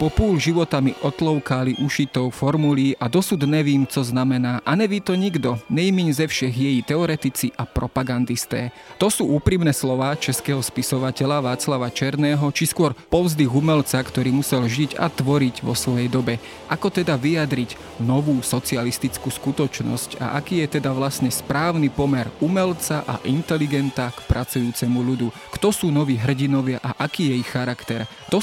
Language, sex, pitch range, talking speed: Slovak, male, 125-155 Hz, 145 wpm